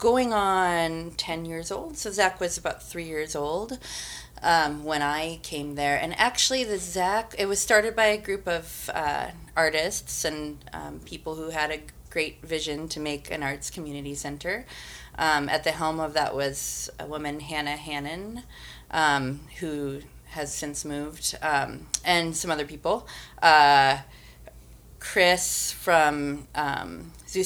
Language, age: English, 30-49